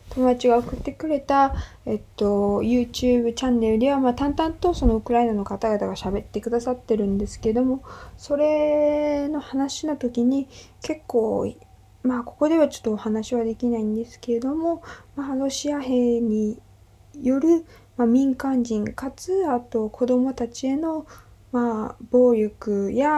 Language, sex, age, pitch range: Japanese, female, 20-39, 220-280 Hz